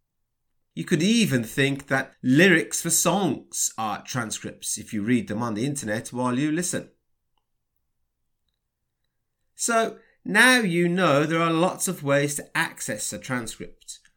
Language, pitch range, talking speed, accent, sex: English, 120-180 Hz, 140 wpm, British, male